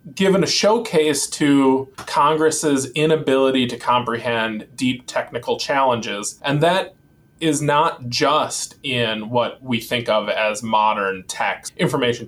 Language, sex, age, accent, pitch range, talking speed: English, male, 20-39, American, 120-155 Hz, 120 wpm